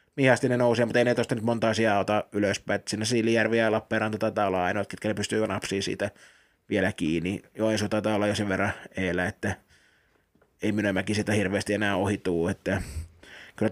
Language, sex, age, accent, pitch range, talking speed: Finnish, male, 20-39, native, 105-120 Hz, 180 wpm